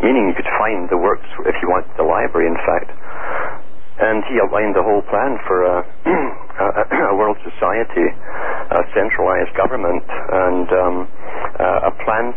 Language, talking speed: English, 155 wpm